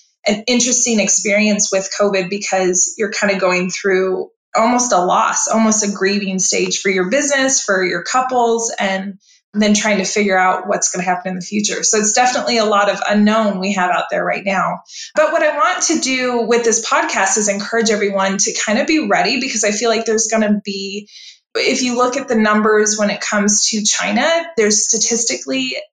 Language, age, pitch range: English, 20-39, 195-235 Hz